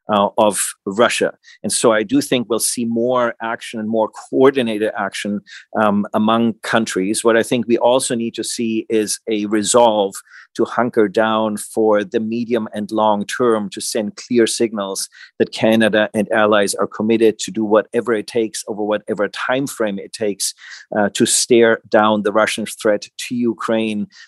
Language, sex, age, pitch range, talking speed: English, male, 40-59, 105-115 Hz, 170 wpm